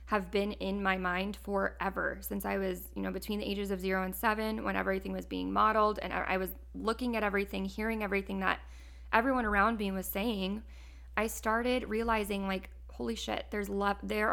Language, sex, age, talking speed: English, female, 20-39, 195 wpm